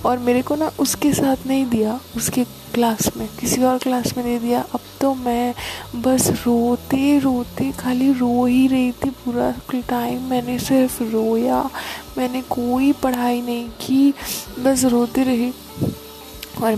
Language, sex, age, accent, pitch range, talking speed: Hindi, female, 20-39, native, 215-250 Hz, 155 wpm